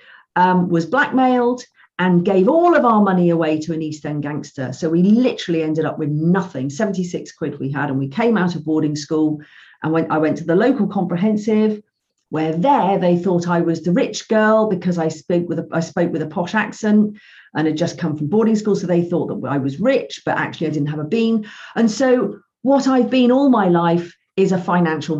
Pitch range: 160-220 Hz